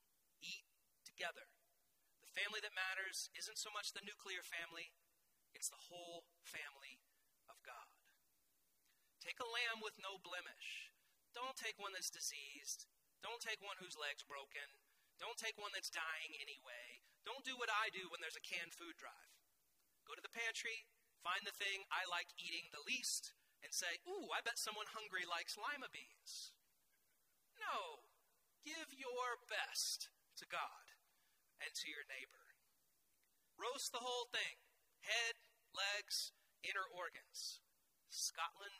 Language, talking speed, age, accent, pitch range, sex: English, 140 wpm, 30-49, American, 190-255 Hz, male